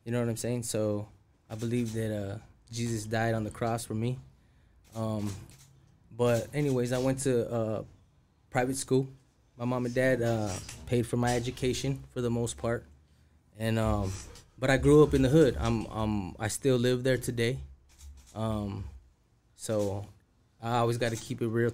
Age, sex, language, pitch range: 20-39, male, English, 100-120 Hz